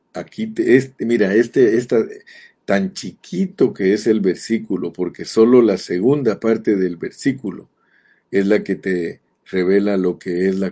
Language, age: Spanish, 50-69